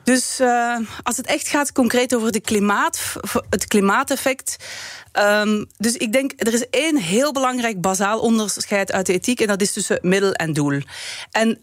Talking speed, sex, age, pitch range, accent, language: 160 wpm, female, 30-49, 180-230 Hz, Dutch, Dutch